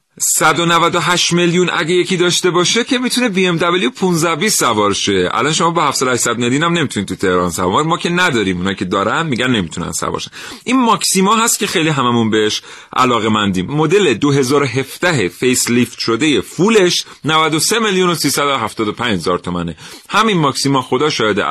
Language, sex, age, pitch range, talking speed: Persian, male, 40-59, 105-175 Hz, 165 wpm